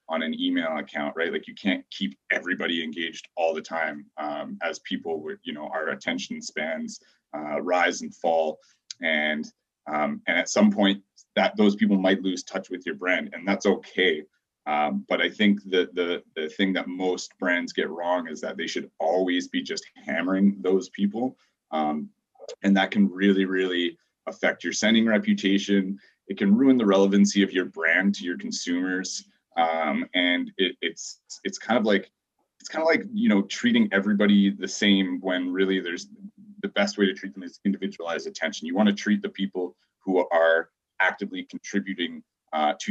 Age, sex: 30-49, male